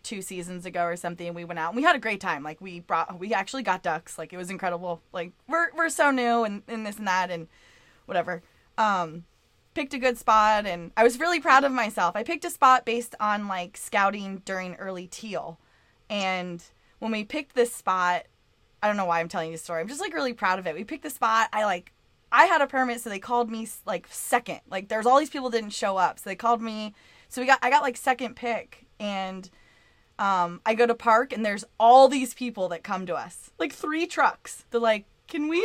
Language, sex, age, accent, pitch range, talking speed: English, female, 20-39, American, 185-250 Hz, 235 wpm